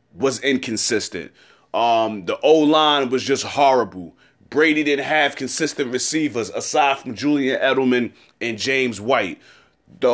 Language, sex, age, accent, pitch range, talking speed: English, male, 30-49, American, 130-170 Hz, 125 wpm